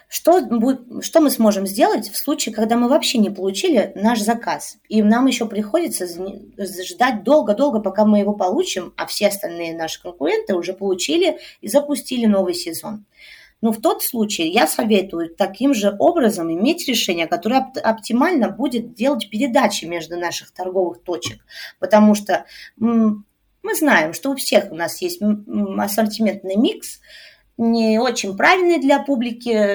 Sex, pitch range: female, 195-255 Hz